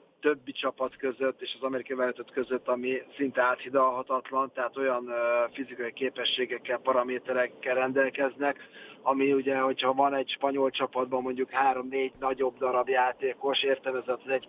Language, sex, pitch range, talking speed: Hungarian, male, 125-135 Hz, 135 wpm